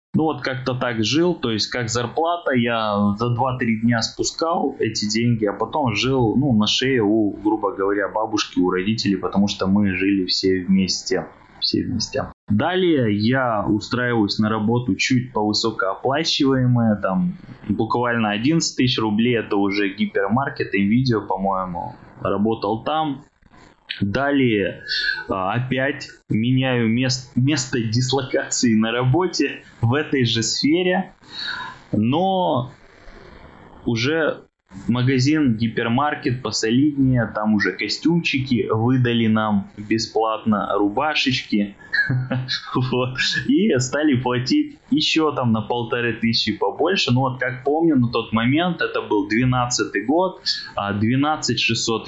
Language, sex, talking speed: Russian, male, 115 wpm